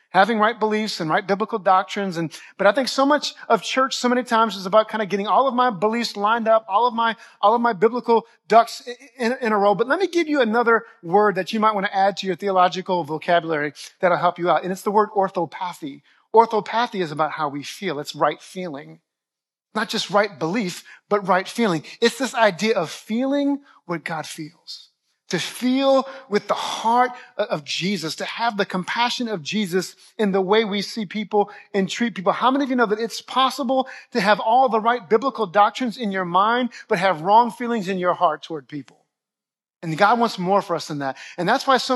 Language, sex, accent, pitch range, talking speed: English, male, American, 185-235 Hz, 220 wpm